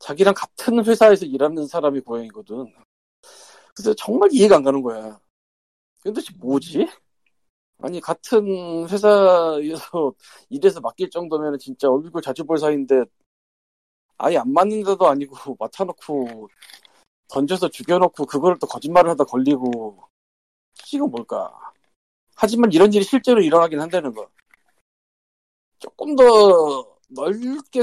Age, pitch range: 40-59, 135-215 Hz